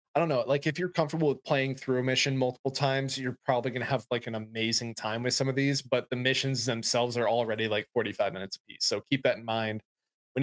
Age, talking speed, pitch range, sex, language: 20-39, 255 wpm, 115-135 Hz, male, English